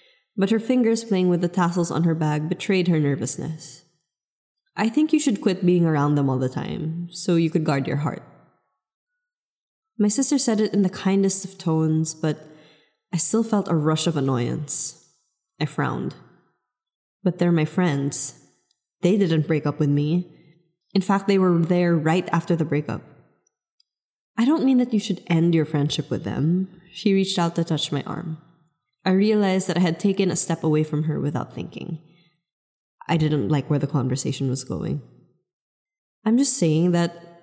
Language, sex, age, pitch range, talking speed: English, female, 20-39, 155-195 Hz, 180 wpm